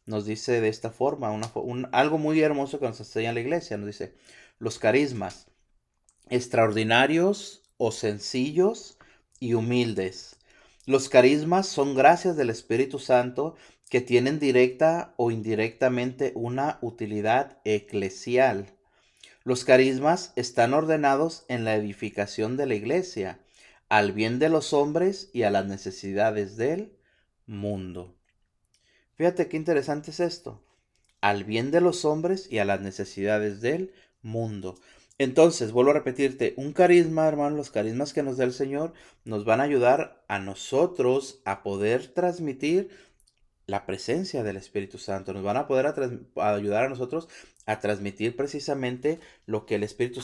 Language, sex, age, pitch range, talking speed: Spanish, male, 30-49, 105-145 Hz, 140 wpm